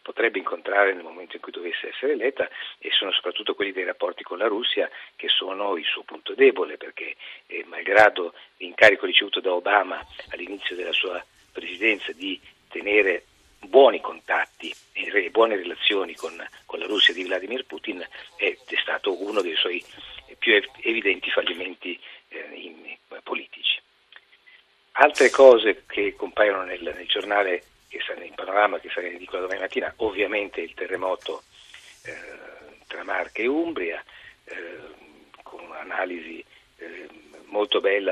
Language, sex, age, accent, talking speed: Italian, male, 50-69, native, 135 wpm